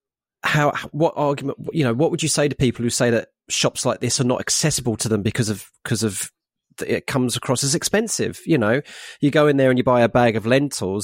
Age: 30-49